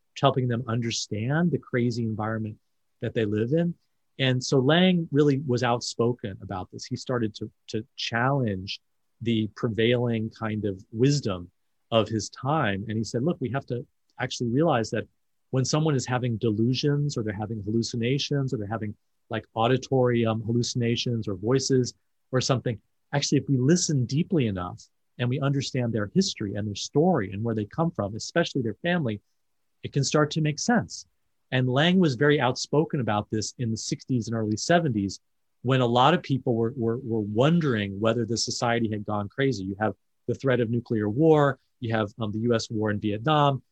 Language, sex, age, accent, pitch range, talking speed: English, male, 30-49, American, 110-135 Hz, 180 wpm